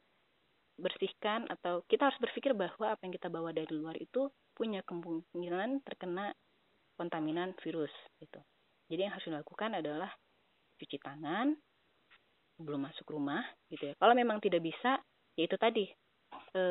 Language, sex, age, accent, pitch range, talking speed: Indonesian, female, 30-49, native, 165-215 Hz, 135 wpm